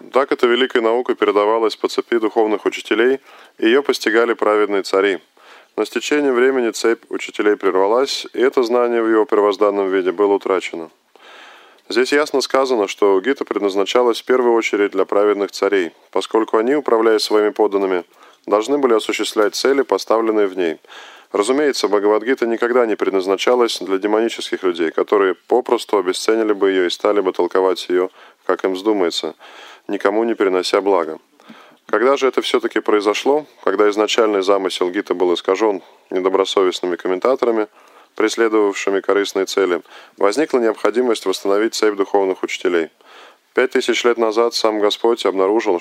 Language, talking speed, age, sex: Russian, 140 wpm, 20-39, male